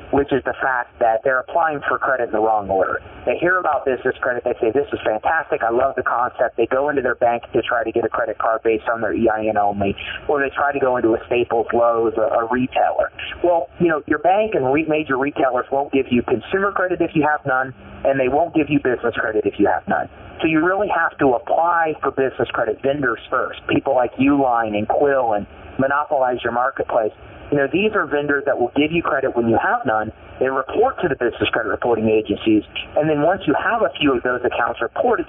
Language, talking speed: English, 235 wpm